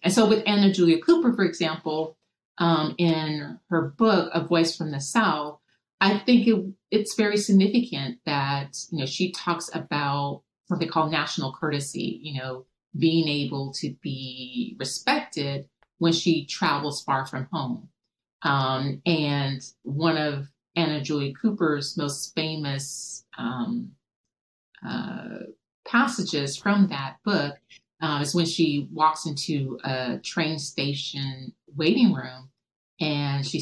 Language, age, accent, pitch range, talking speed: English, 40-59, American, 135-170 Hz, 135 wpm